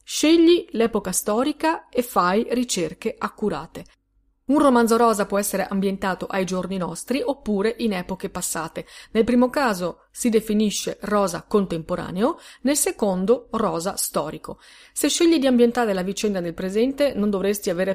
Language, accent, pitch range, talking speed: Italian, native, 180-235 Hz, 140 wpm